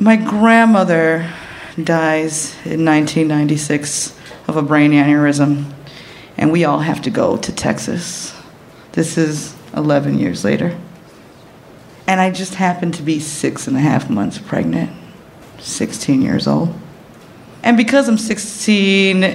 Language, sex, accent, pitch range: English, female, American, 155-190 Hz